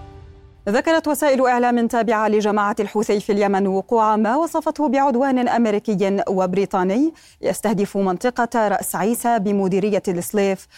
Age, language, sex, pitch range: 30-49, Arabic, female, 190-235 Hz